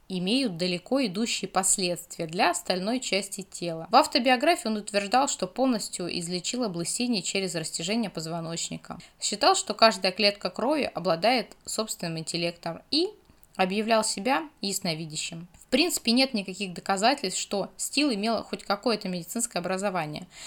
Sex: female